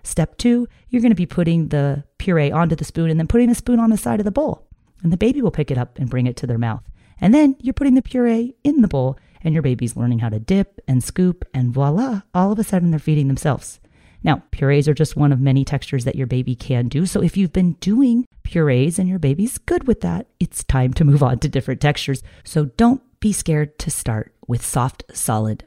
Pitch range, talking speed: 130-185 Hz, 245 wpm